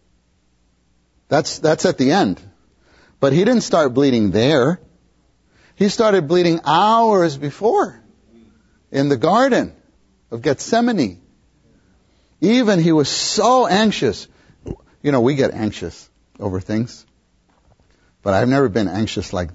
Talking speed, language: 120 wpm, English